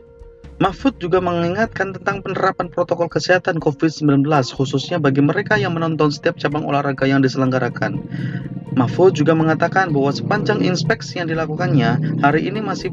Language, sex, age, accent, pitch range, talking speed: Indonesian, male, 30-49, native, 140-170 Hz, 135 wpm